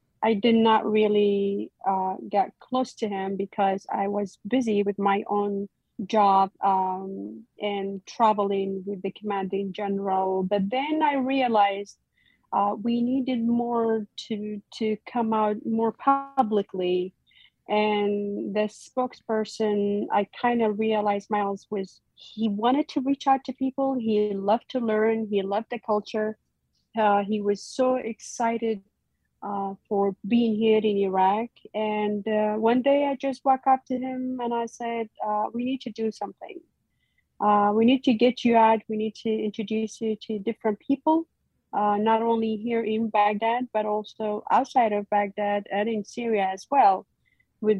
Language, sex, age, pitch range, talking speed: English, female, 40-59, 205-235 Hz, 155 wpm